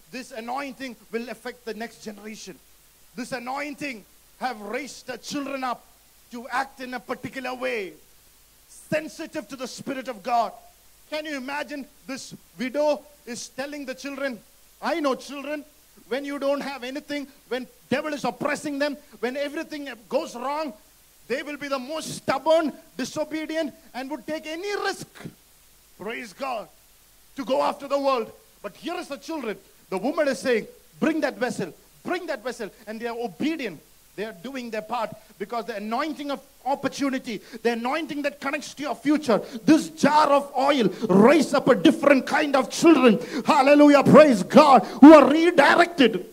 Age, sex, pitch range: 50-69, male, 240-295 Hz